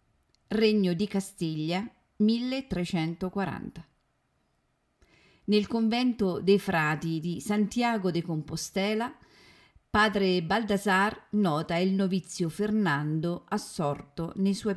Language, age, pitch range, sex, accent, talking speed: Italian, 40-59, 165-215 Hz, female, native, 85 wpm